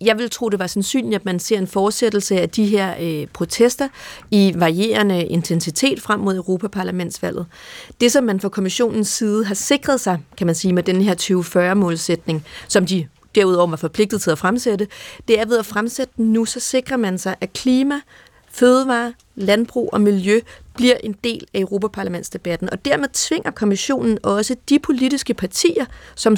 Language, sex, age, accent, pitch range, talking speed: Danish, female, 40-59, native, 185-245 Hz, 175 wpm